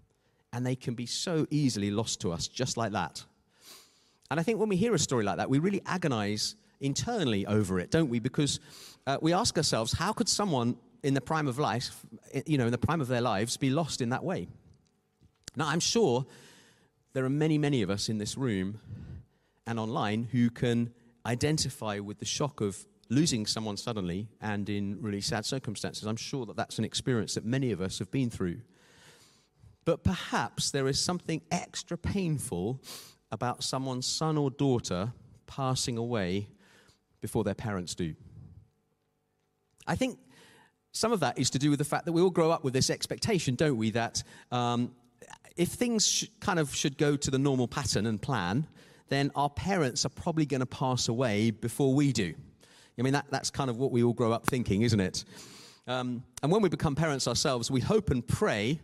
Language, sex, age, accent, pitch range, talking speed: English, male, 40-59, British, 110-145 Hz, 190 wpm